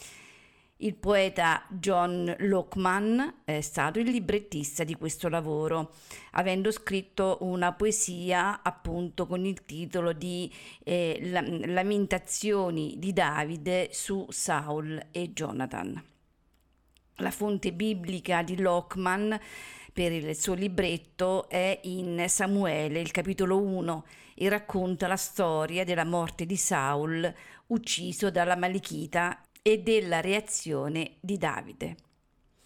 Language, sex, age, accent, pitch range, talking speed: Italian, female, 50-69, native, 165-200 Hz, 110 wpm